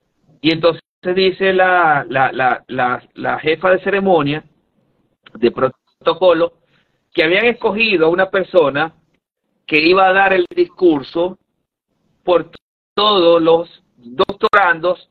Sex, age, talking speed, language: male, 50-69, 120 wpm, Spanish